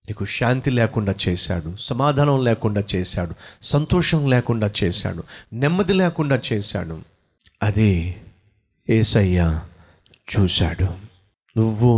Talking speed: 85 wpm